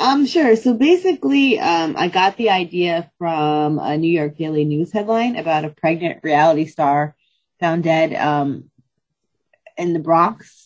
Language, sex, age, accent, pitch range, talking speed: English, female, 30-49, American, 150-185 Hz, 150 wpm